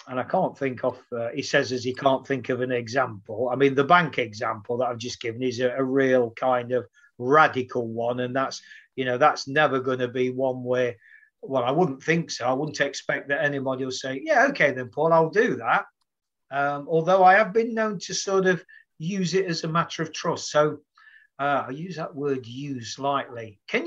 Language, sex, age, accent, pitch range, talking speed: English, male, 40-59, British, 130-190 Hz, 220 wpm